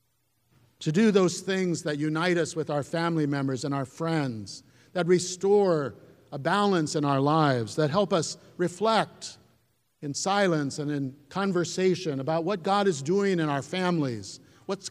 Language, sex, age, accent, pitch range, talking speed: English, male, 50-69, American, 125-175 Hz, 155 wpm